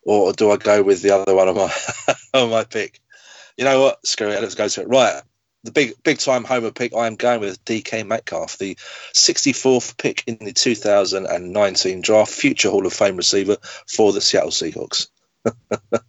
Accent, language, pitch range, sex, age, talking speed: British, English, 105-135 Hz, male, 30-49, 200 wpm